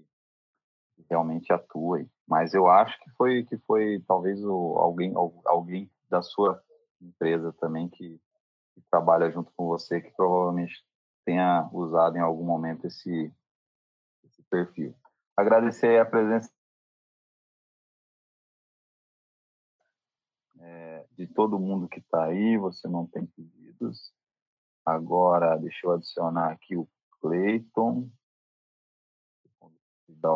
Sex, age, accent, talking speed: male, 40-59, Brazilian, 110 wpm